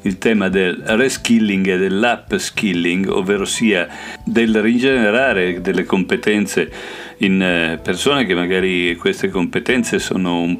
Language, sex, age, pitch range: Italian, male, 50-69, 90-105 Hz